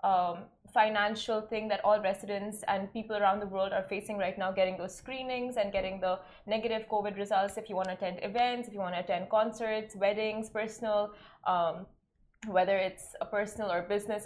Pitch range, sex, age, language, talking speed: 200-225 Hz, female, 20-39, Arabic, 190 wpm